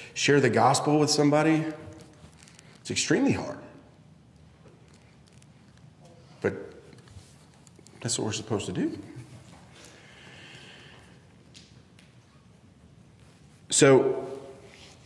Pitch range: 115-145 Hz